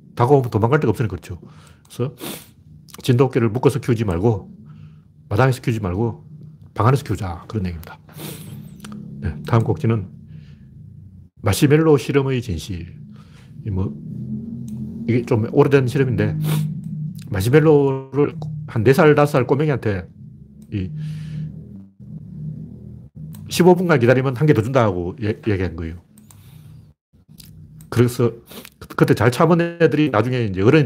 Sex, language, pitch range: male, Korean, 105-145 Hz